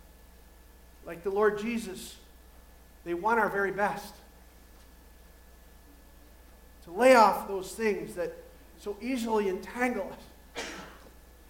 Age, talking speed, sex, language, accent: 40-59, 100 wpm, male, English, American